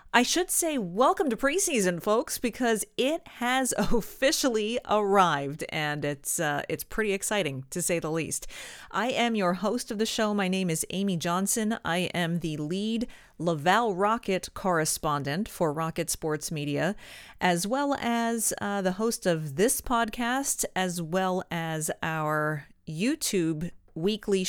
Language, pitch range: English, 160-225 Hz